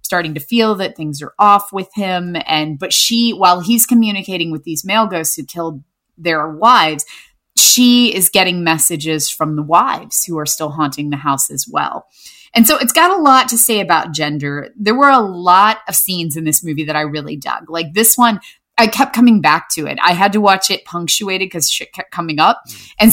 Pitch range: 155-210 Hz